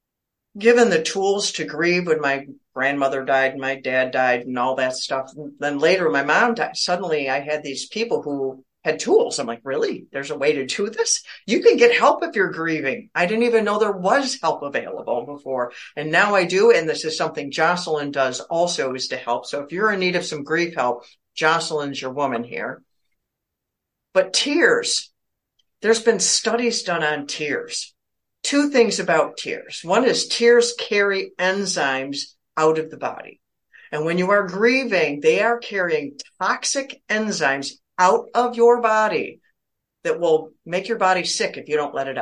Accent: American